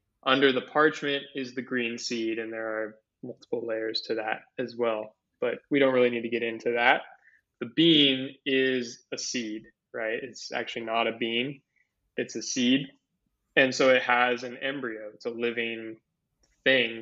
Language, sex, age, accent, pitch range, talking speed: English, male, 20-39, American, 115-135 Hz, 175 wpm